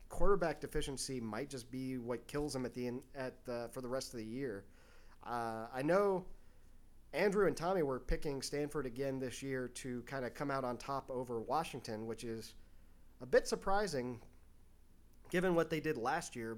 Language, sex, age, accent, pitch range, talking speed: English, male, 30-49, American, 125-170 Hz, 165 wpm